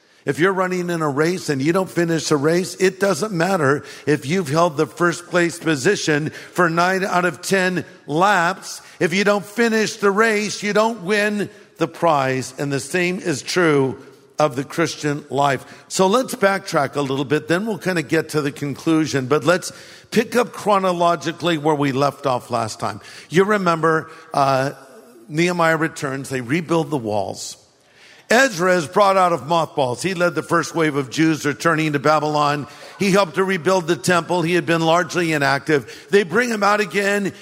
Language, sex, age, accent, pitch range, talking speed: English, male, 50-69, American, 150-190 Hz, 185 wpm